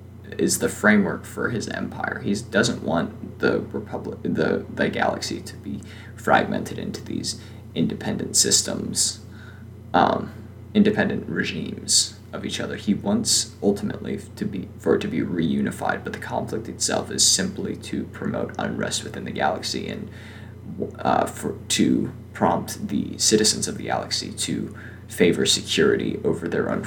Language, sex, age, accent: English, male, 20-39, American